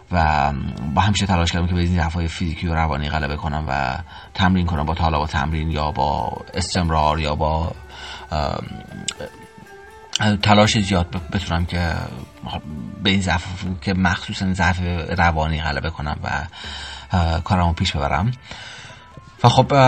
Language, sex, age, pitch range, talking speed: Persian, male, 30-49, 85-100 Hz, 135 wpm